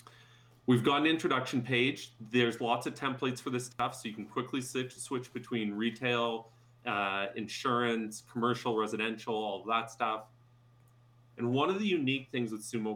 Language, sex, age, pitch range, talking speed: English, male, 30-49, 110-125 Hz, 160 wpm